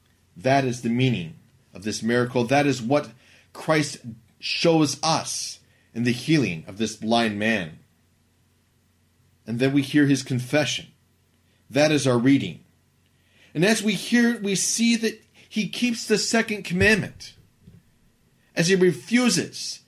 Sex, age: male, 40-59